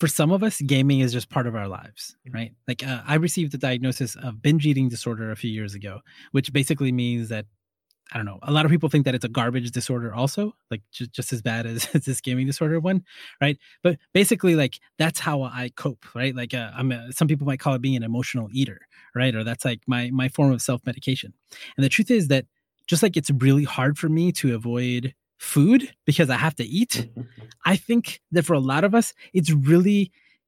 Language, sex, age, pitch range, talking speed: English, male, 20-39, 125-160 Hz, 225 wpm